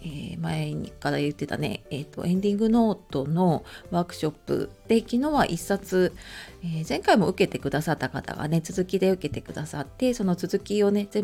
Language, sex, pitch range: Japanese, female, 160-225 Hz